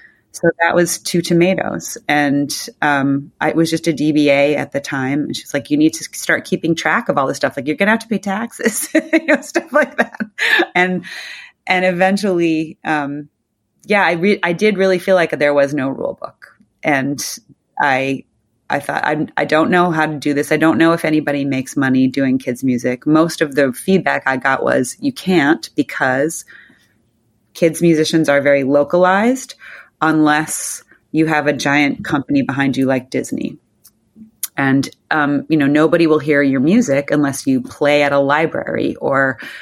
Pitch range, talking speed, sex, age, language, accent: 140-175 Hz, 180 wpm, female, 30-49, English, American